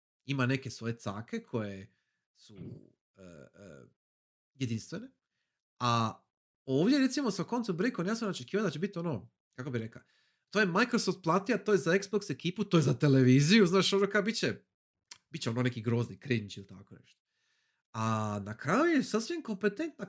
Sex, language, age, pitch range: male, Croatian, 40-59, 115-195 Hz